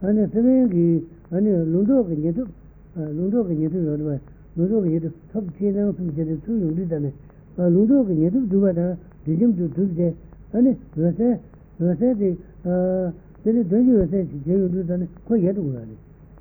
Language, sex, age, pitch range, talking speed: Italian, male, 60-79, 160-205 Hz, 135 wpm